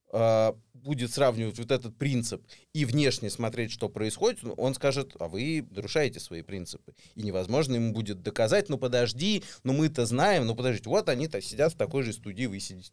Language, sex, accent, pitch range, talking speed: Russian, male, native, 105-140 Hz, 175 wpm